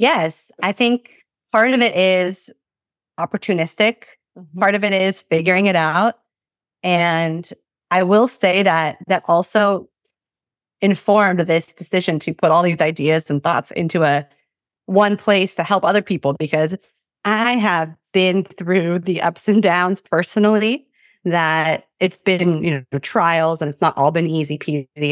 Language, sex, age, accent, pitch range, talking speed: English, female, 30-49, American, 155-195 Hz, 150 wpm